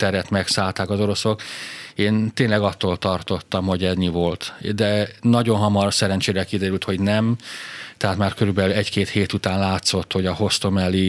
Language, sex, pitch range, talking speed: Hungarian, male, 95-105 Hz, 150 wpm